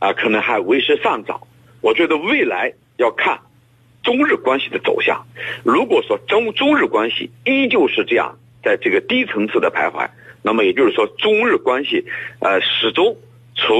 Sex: male